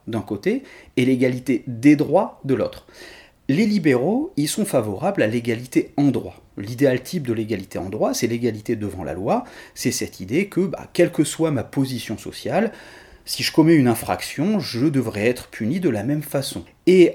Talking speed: 185 wpm